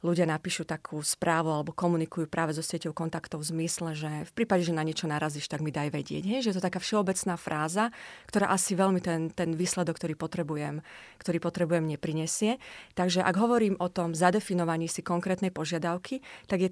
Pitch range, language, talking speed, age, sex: 165-190 Hz, Slovak, 190 wpm, 30-49, female